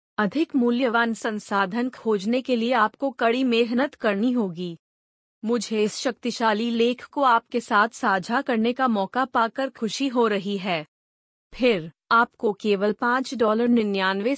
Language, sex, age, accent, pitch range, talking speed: Hindi, female, 30-49, native, 205-250 Hz, 140 wpm